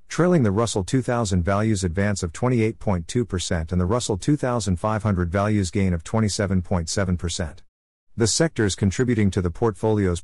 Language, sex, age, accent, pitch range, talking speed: English, male, 50-69, American, 90-115 Hz, 130 wpm